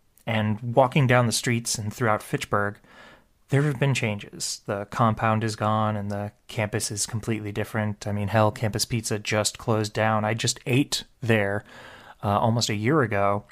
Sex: male